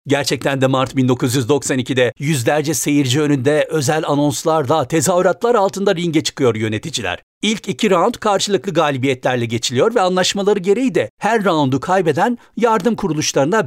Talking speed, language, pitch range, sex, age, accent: 125 wpm, Turkish, 135-190 Hz, male, 60-79, native